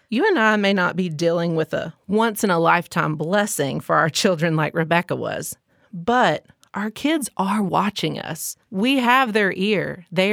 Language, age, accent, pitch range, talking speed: English, 30-49, American, 165-215 Hz, 180 wpm